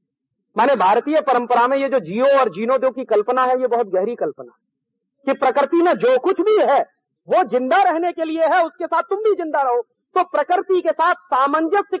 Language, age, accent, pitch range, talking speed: Hindi, 40-59, native, 250-345 Hz, 205 wpm